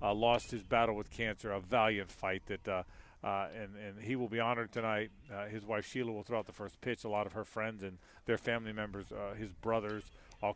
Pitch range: 100-125 Hz